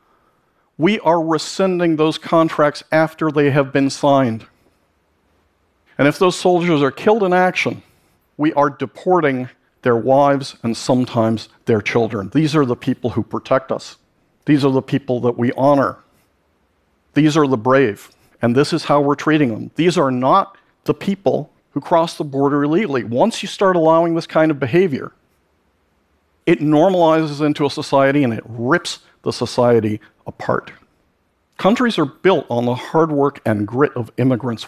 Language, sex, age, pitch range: Korean, male, 50-69, 120-160 Hz